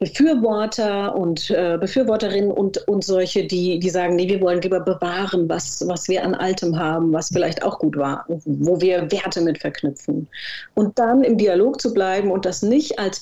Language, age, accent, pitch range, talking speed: German, 40-59, German, 180-235 Hz, 185 wpm